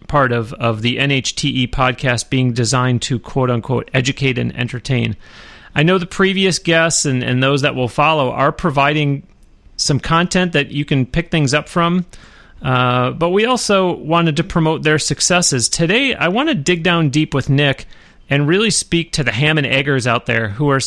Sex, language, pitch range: male, English, 130-170 Hz